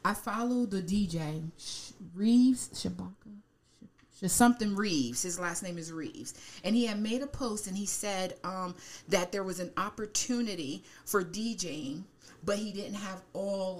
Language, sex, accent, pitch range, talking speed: English, female, American, 195-270 Hz, 155 wpm